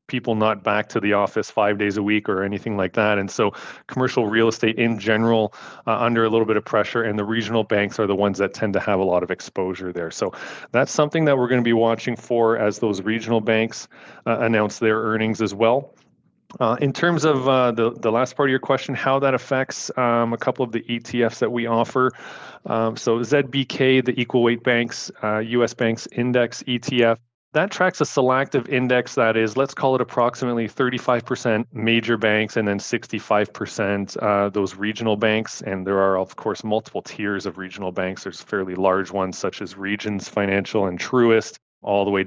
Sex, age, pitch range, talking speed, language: male, 30-49, 105-120 Hz, 205 wpm, English